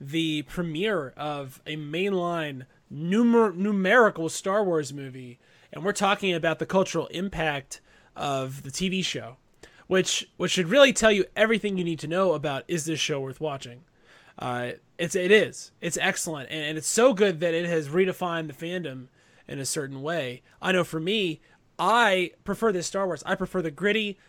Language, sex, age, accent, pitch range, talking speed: English, male, 20-39, American, 150-190 Hz, 180 wpm